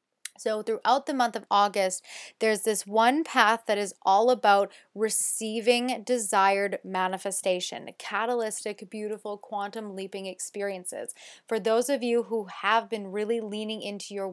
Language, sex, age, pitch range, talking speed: English, female, 20-39, 195-225 Hz, 140 wpm